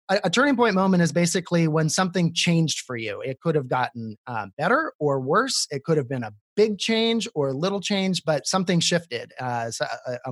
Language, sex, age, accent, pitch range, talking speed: English, male, 30-49, American, 135-180 Hz, 215 wpm